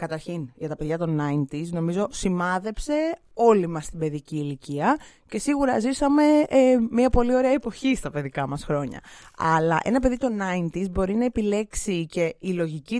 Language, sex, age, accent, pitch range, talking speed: Greek, female, 20-39, native, 150-230 Hz, 160 wpm